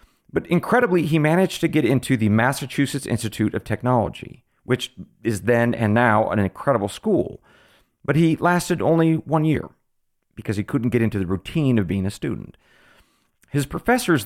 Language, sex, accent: English, male, American